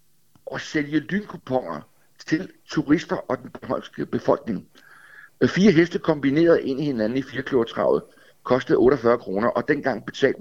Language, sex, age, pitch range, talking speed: Danish, male, 60-79, 130-195 Hz, 135 wpm